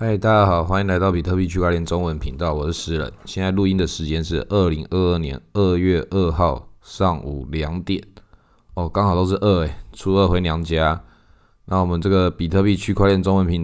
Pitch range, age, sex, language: 85-100 Hz, 20-39, male, Chinese